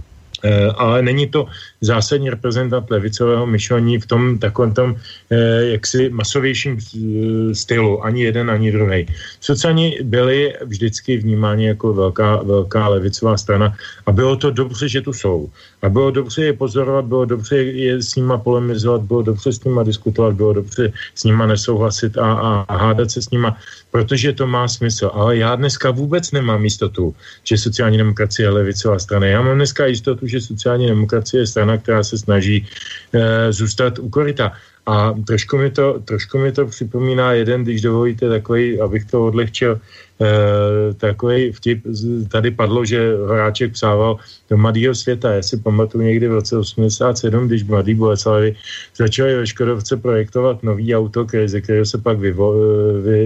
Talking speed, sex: 160 wpm, male